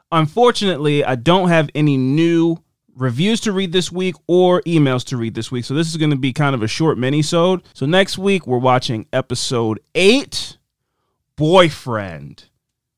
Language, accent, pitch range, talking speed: English, American, 105-145 Hz, 165 wpm